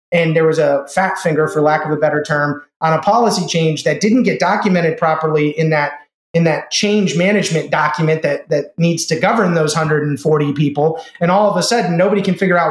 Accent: American